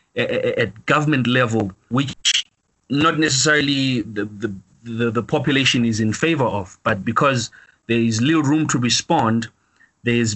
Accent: South African